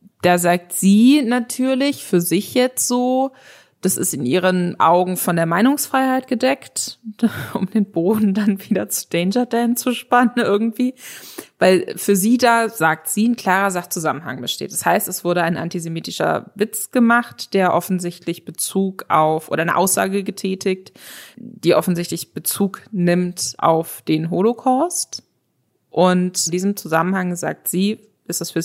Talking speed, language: 145 wpm, German